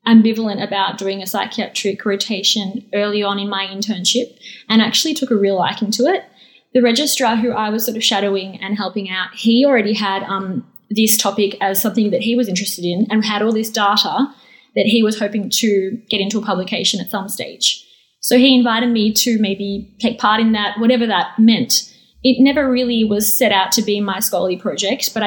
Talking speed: 200 wpm